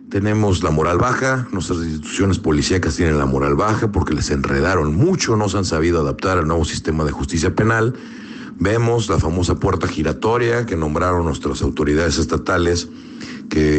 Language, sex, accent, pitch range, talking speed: Spanish, male, Mexican, 80-115 Hz, 160 wpm